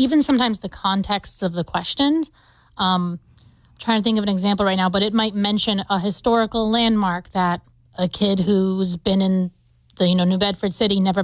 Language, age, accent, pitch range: English, 30-49, American, 180-220 Hz